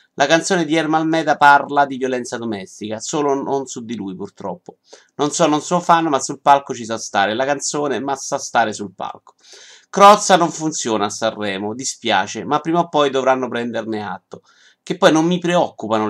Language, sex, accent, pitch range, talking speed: Italian, male, native, 115-150 Hz, 200 wpm